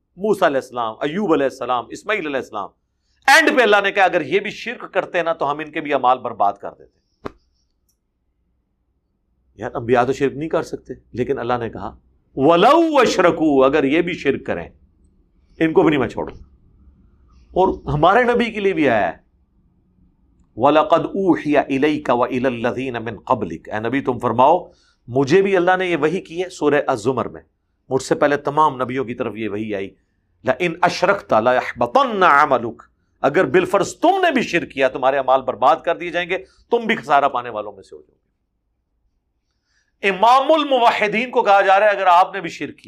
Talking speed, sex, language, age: 170 wpm, male, Urdu, 50-69